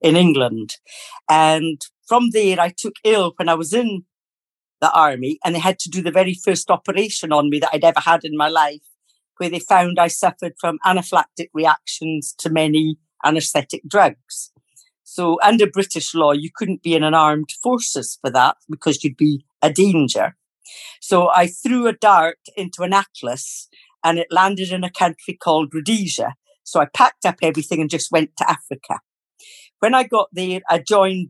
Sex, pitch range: female, 155-185 Hz